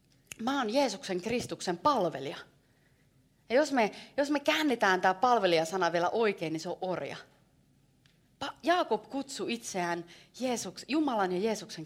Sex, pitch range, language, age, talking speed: female, 160-225 Hz, Finnish, 30-49, 130 wpm